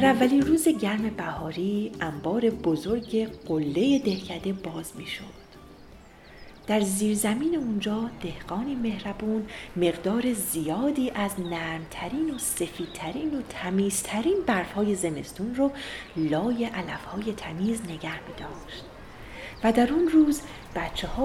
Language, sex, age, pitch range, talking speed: Persian, female, 40-59, 165-235 Hz, 115 wpm